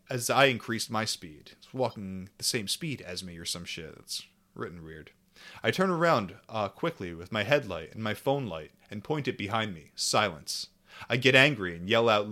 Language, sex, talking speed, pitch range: English, male, 200 wpm, 105-145 Hz